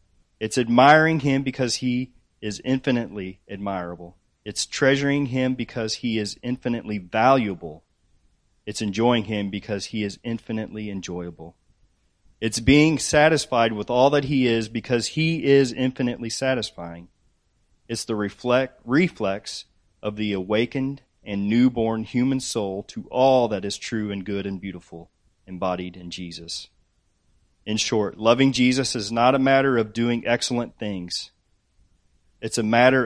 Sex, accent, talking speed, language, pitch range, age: male, American, 135 wpm, English, 95-125 Hz, 30-49